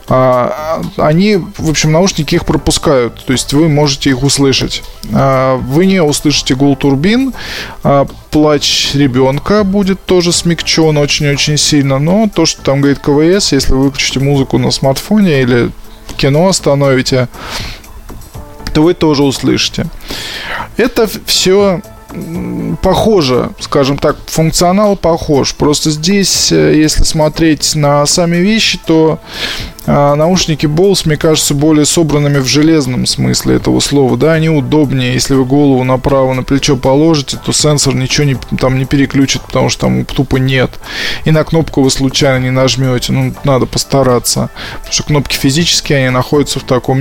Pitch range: 130-160 Hz